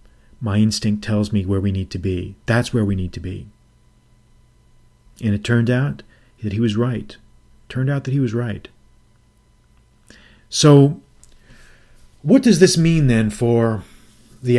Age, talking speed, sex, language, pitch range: 40-59, 150 wpm, male, English, 110-145 Hz